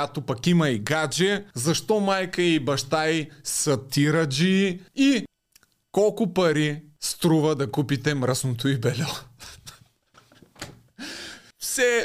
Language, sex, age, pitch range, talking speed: Bulgarian, male, 20-39, 150-190 Hz, 110 wpm